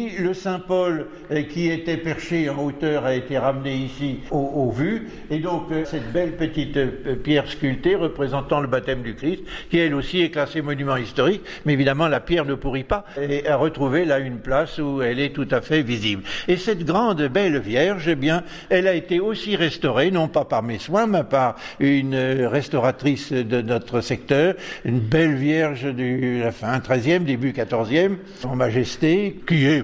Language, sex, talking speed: French, male, 175 wpm